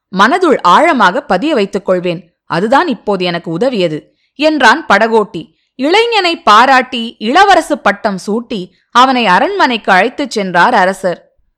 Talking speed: 110 wpm